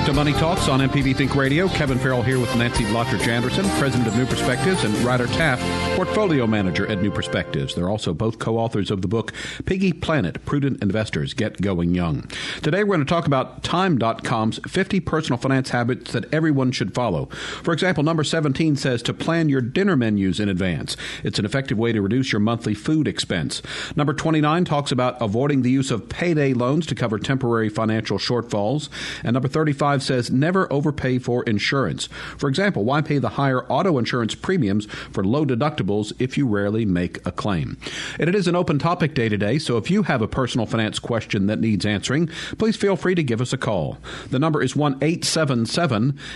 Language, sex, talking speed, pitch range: English, male, 195 wpm, 115-150 Hz